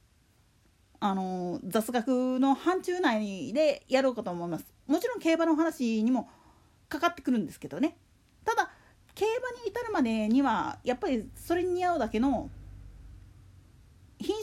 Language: Japanese